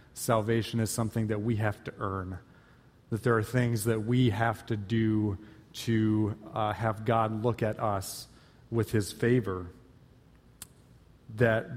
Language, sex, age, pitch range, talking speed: English, male, 30-49, 110-125 Hz, 145 wpm